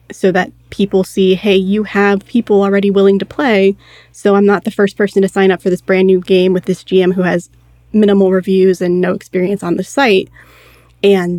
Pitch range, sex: 175-200 Hz, female